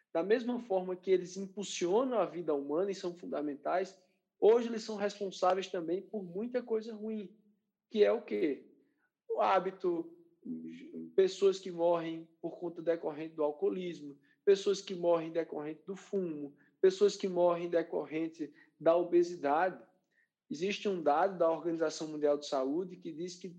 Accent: Brazilian